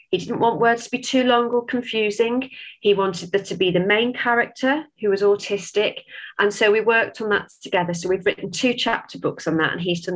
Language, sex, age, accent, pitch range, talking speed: English, female, 30-49, British, 175-235 Hz, 230 wpm